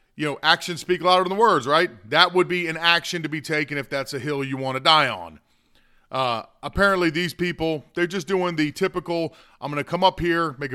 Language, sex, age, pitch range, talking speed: English, male, 40-59, 135-165 Hz, 235 wpm